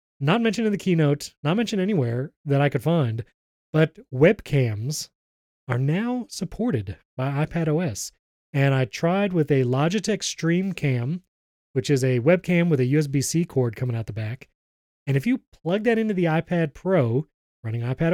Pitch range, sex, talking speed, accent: 135-185 Hz, male, 170 wpm, American